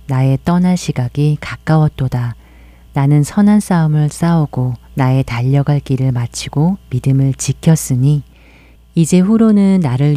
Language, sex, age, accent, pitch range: Korean, female, 40-59, native, 125-150 Hz